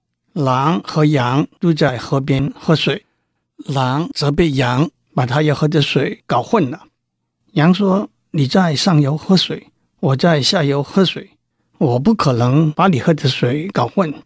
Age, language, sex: 60-79, Chinese, male